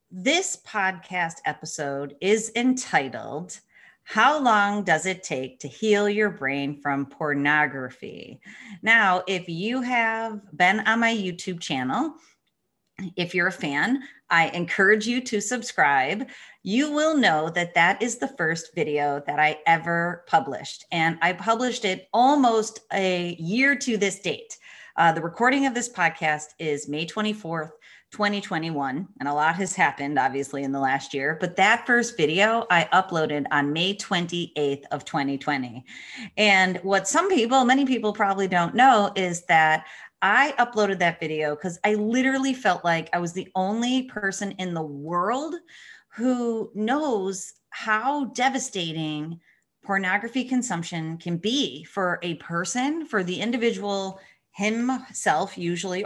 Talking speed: 140 wpm